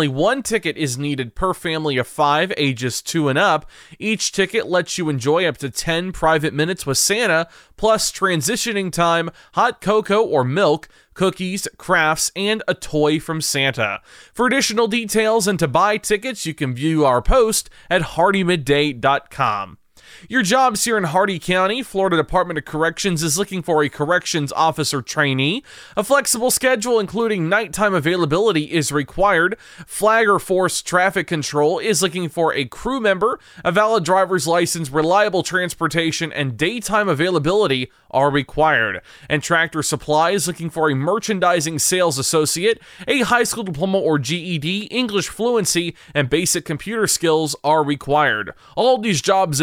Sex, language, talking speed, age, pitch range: male, English, 150 wpm, 20-39, 155-205 Hz